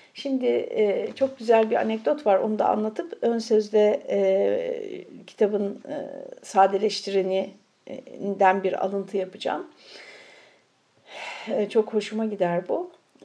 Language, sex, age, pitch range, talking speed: Turkish, female, 60-79, 200-280 Hz, 90 wpm